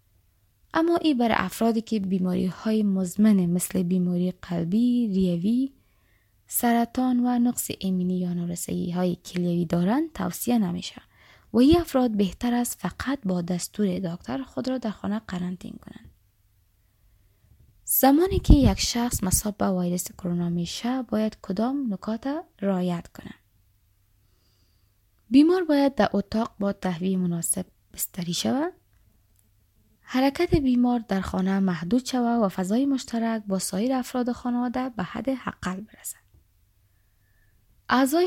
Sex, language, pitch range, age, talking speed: female, Persian, 175-250 Hz, 20-39, 125 wpm